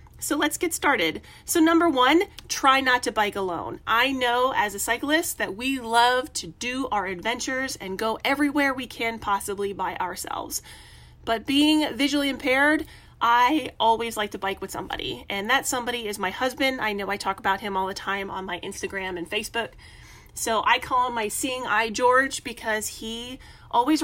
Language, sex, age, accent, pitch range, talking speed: English, female, 30-49, American, 200-265 Hz, 185 wpm